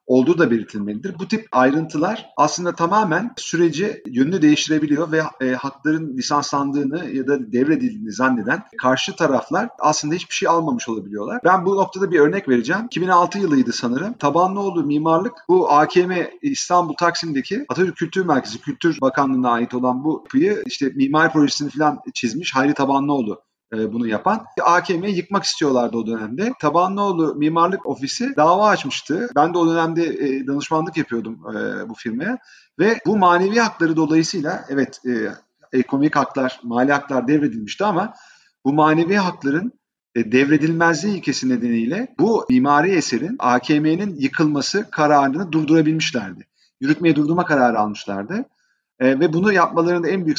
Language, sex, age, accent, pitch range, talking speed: Turkish, male, 40-59, native, 140-185 Hz, 130 wpm